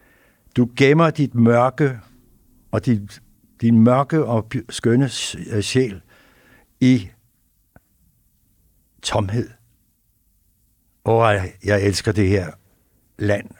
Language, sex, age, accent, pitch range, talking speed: Danish, male, 60-79, native, 110-135 Hz, 85 wpm